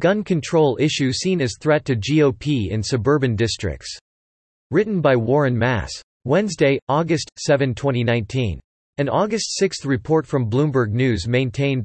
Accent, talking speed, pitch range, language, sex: American, 135 wpm, 120-150 Hz, English, male